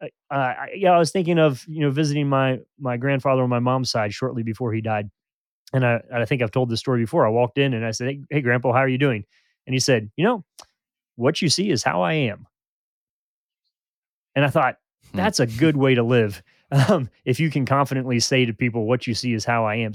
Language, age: English, 30-49